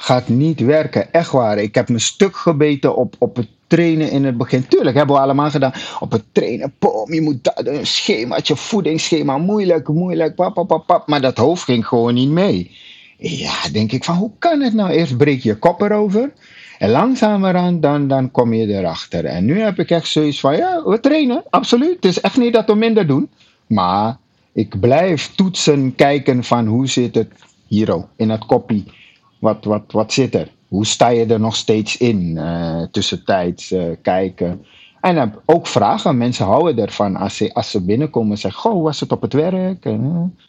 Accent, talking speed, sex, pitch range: Dutch, 200 wpm, male, 110-175 Hz